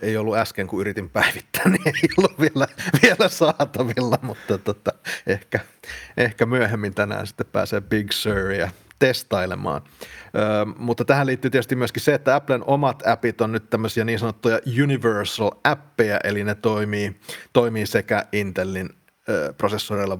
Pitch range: 100-125 Hz